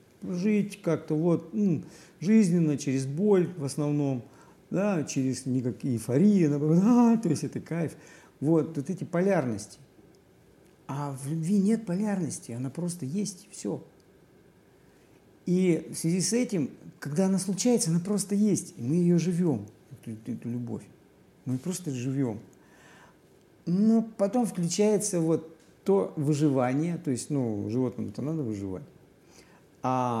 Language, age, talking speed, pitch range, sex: Russian, 50-69, 130 wpm, 130-185 Hz, male